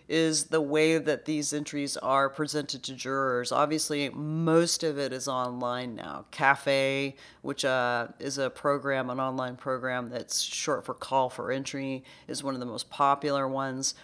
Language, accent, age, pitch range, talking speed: English, American, 40-59, 135-160 Hz, 165 wpm